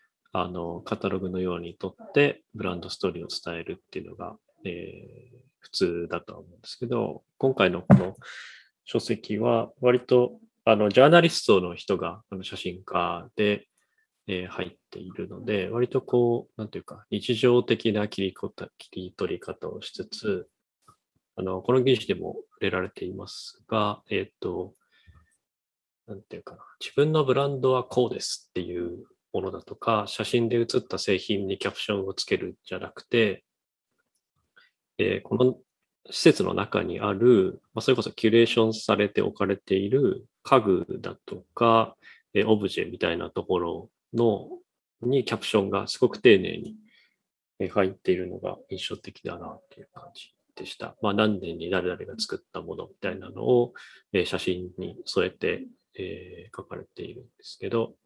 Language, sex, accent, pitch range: English, male, Japanese, 95-125 Hz